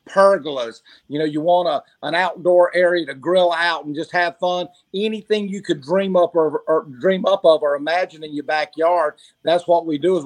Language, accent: English, American